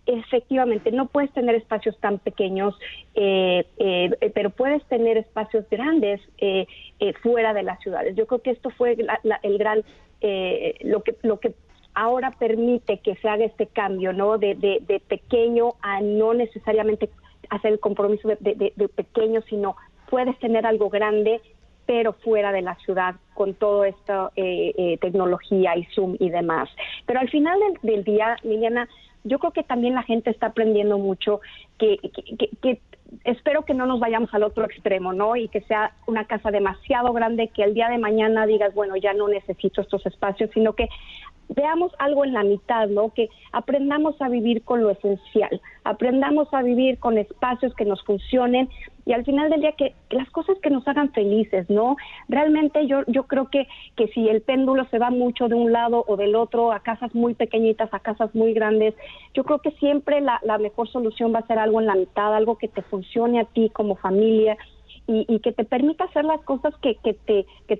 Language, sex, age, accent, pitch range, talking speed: Spanish, female, 40-59, Mexican, 210-250 Hz, 195 wpm